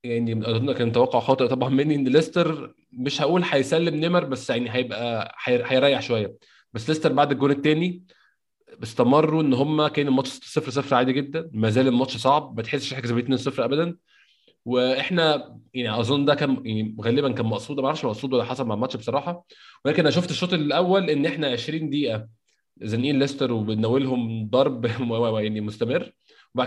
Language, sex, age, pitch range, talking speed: Arabic, male, 20-39, 125-155 Hz, 170 wpm